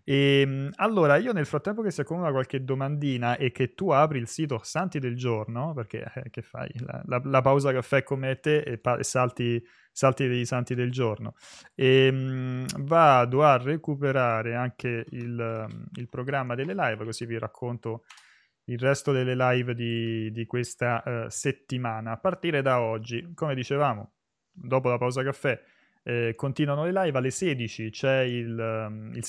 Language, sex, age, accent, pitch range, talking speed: Italian, male, 30-49, native, 115-140 Hz, 160 wpm